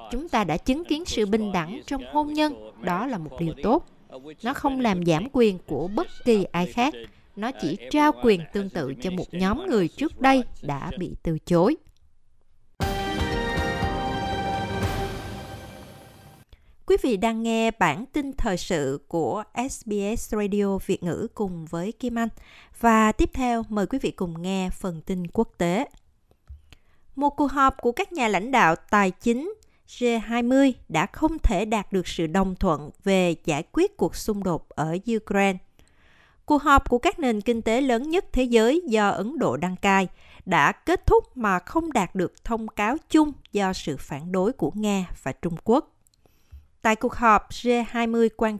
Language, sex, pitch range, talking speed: Vietnamese, female, 170-245 Hz, 170 wpm